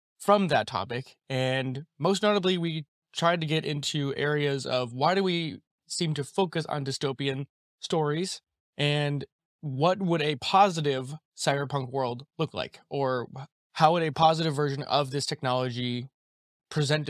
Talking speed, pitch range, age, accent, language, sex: 145 wpm, 130-160 Hz, 20-39, American, English, male